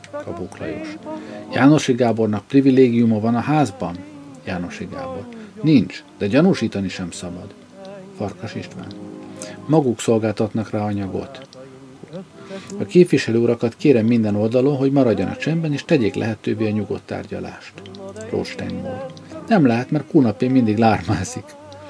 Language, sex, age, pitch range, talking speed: Hungarian, male, 50-69, 105-140 Hz, 110 wpm